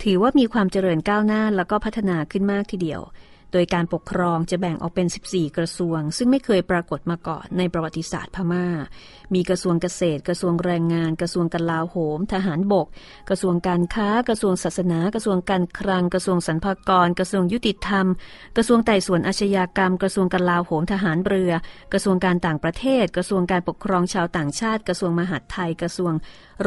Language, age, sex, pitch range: Thai, 30-49, female, 170-195 Hz